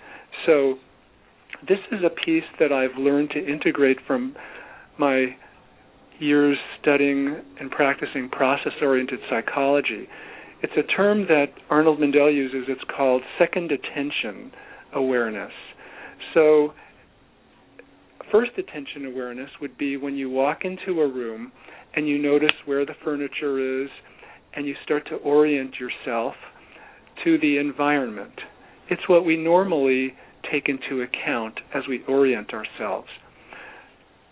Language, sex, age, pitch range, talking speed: English, male, 50-69, 135-155 Hz, 120 wpm